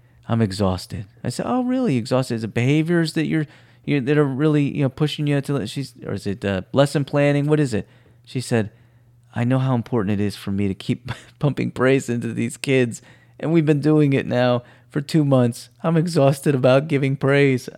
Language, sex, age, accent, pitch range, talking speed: English, male, 30-49, American, 110-135 Hz, 215 wpm